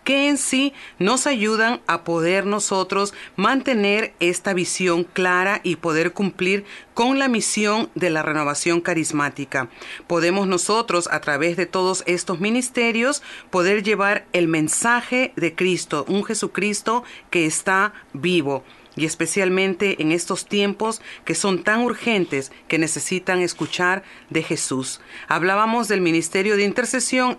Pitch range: 170-230 Hz